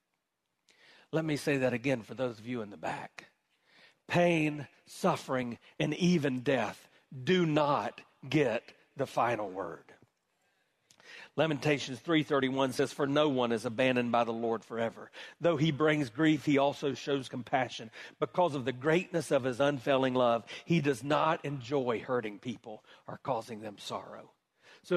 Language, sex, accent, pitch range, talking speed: English, male, American, 140-185 Hz, 150 wpm